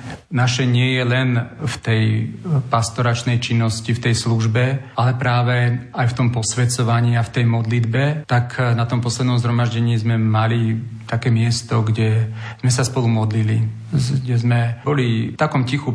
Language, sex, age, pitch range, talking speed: Slovak, male, 40-59, 120-130 Hz, 150 wpm